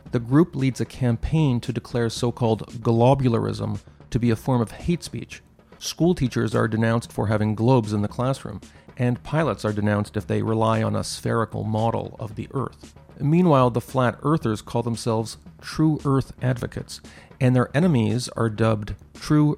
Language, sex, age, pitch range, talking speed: English, male, 40-59, 110-130 Hz, 170 wpm